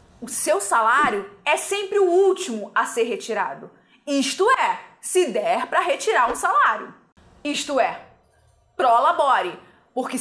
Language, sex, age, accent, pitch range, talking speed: Portuguese, female, 20-39, Brazilian, 240-390 Hz, 130 wpm